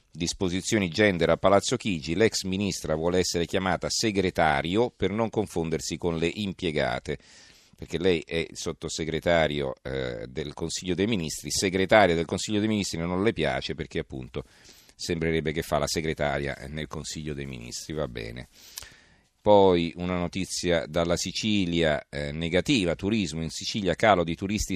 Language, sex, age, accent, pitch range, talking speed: Italian, male, 40-59, native, 80-100 Hz, 145 wpm